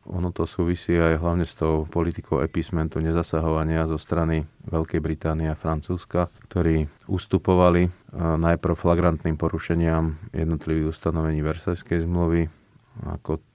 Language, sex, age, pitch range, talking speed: Slovak, male, 30-49, 75-85 Hz, 115 wpm